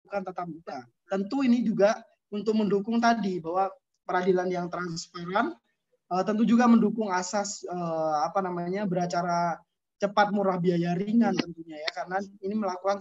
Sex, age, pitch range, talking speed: male, 20-39, 185-220 Hz, 135 wpm